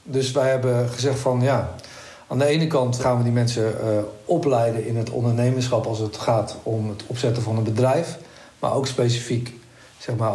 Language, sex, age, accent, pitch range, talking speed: Dutch, male, 60-79, Dutch, 115-140 Hz, 190 wpm